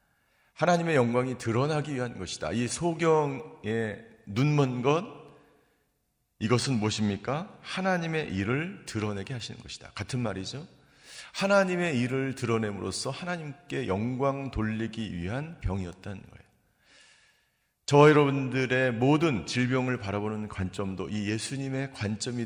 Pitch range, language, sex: 110-145 Hz, Korean, male